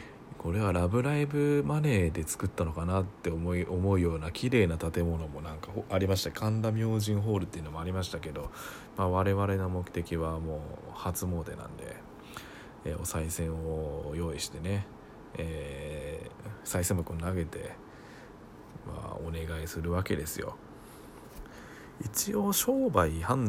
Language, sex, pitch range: Japanese, male, 80-105 Hz